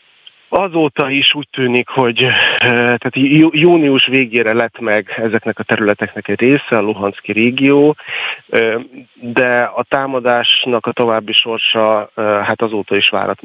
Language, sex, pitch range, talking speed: Hungarian, male, 105-125 Hz, 125 wpm